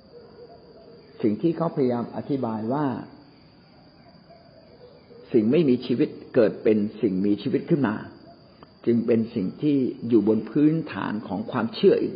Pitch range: 120-185 Hz